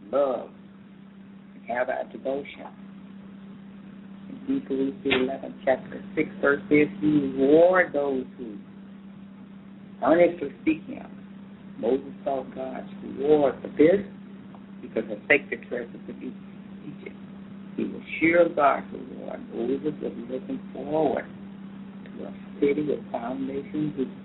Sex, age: female, 50-69